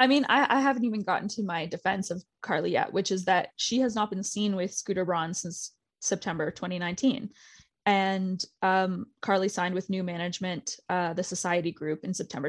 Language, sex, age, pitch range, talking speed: English, female, 20-39, 180-210 Hz, 190 wpm